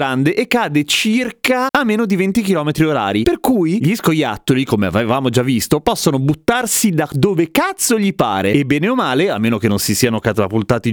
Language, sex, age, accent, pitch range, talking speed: Italian, male, 30-49, native, 125-190 Hz, 200 wpm